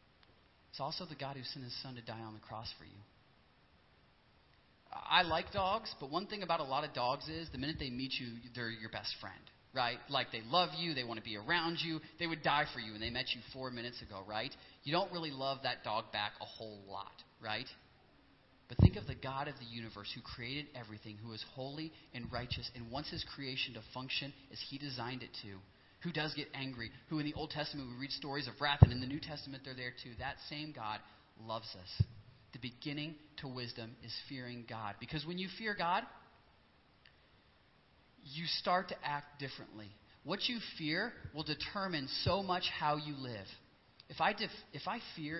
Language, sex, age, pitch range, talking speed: English, male, 30-49, 115-150 Hz, 205 wpm